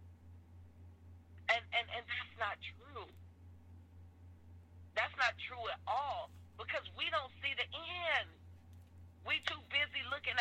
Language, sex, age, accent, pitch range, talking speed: English, female, 40-59, American, 85-90 Hz, 120 wpm